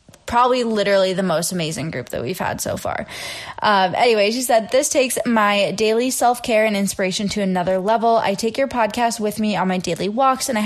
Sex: female